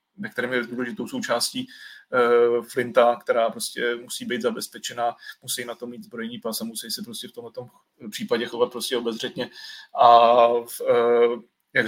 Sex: male